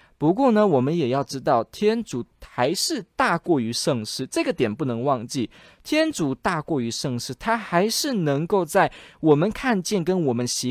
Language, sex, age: Chinese, male, 20-39